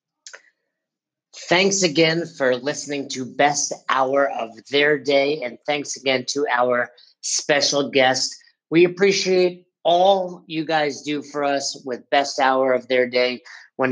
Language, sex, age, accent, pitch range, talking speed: English, male, 50-69, American, 130-155 Hz, 140 wpm